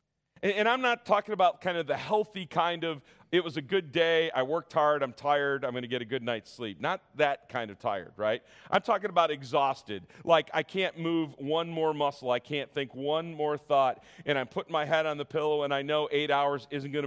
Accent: American